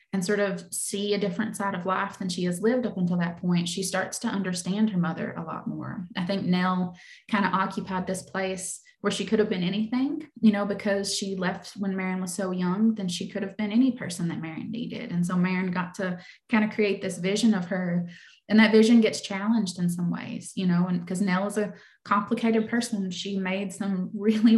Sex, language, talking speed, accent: female, English, 225 wpm, American